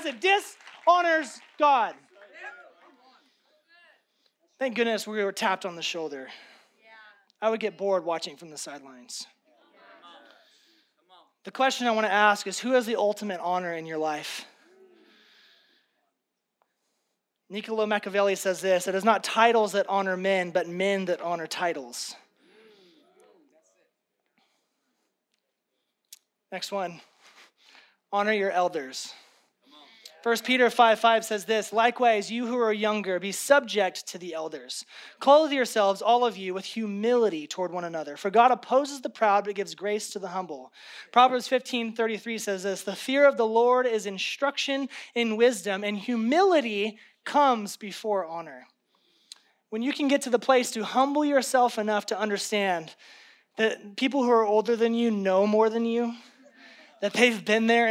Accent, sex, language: American, male, English